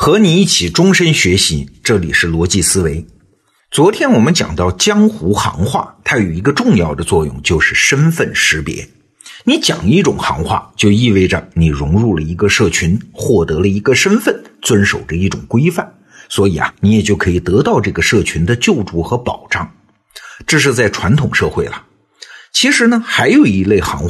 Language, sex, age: Chinese, male, 50-69